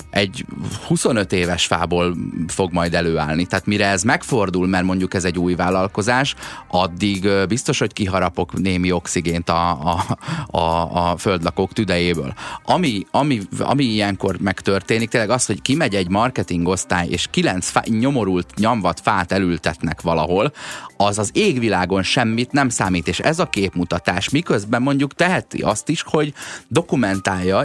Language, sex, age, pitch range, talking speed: Hungarian, male, 30-49, 90-125 Hz, 140 wpm